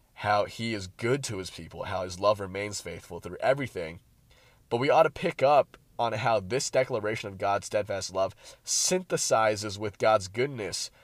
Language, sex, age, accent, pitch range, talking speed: English, male, 30-49, American, 100-130 Hz, 175 wpm